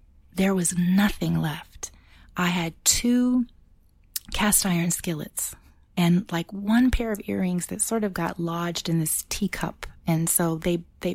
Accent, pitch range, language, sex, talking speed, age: American, 165-210 Hz, English, female, 150 wpm, 30-49